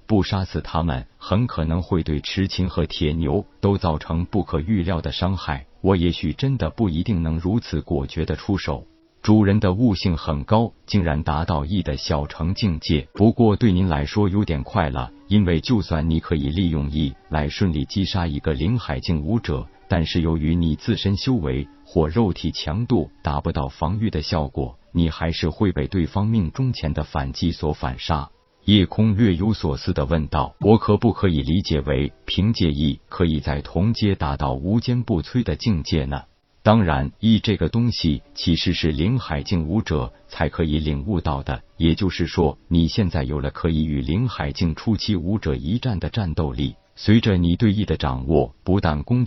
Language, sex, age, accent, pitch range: Chinese, male, 50-69, native, 75-100 Hz